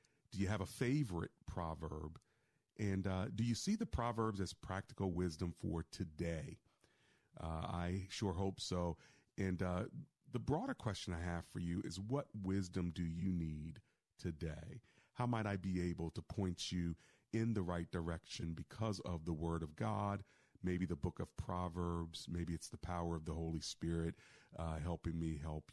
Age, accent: 40-59, American